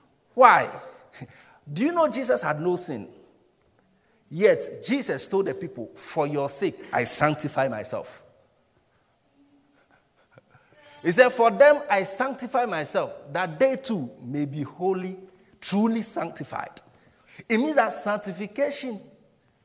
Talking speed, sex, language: 115 wpm, male, English